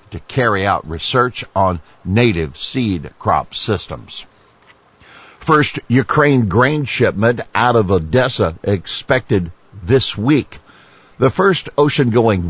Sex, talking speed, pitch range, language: male, 105 wpm, 90-120 Hz, English